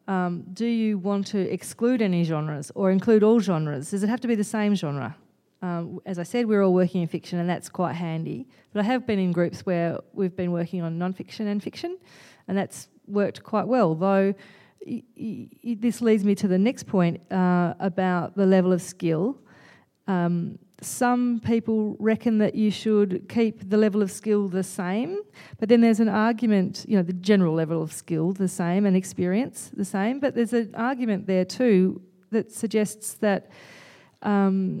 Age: 40-59